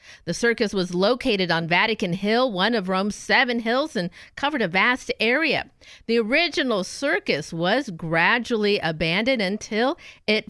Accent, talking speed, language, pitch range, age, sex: American, 145 wpm, English, 185-250 Hz, 50-69, female